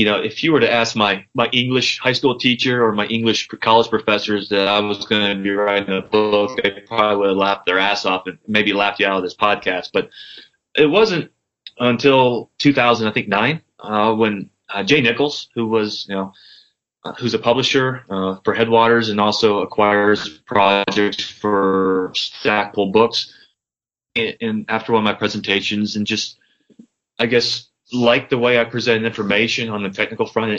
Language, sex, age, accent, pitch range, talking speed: English, male, 20-39, American, 105-120 Hz, 185 wpm